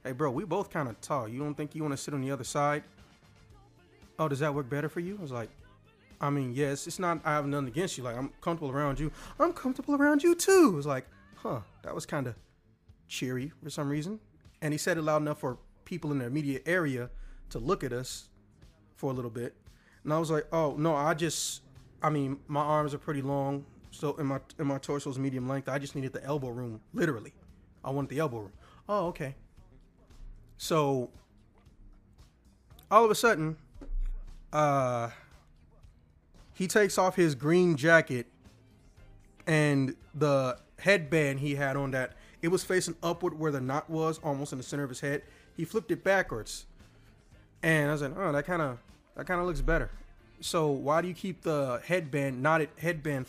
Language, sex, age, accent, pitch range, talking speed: English, male, 30-49, American, 125-160 Hz, 200 wpm